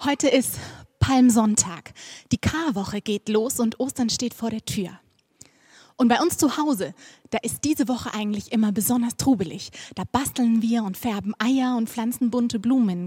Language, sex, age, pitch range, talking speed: German, female, 20-39, 210-250 Hz, 170 wpm